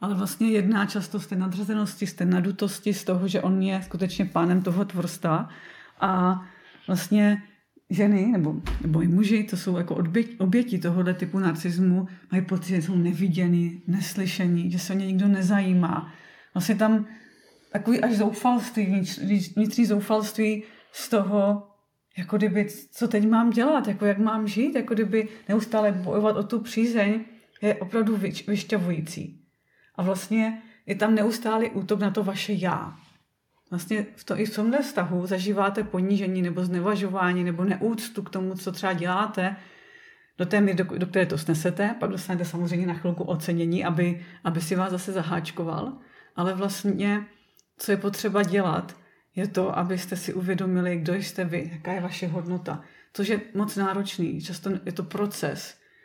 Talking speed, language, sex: 160 wpm, Czech, female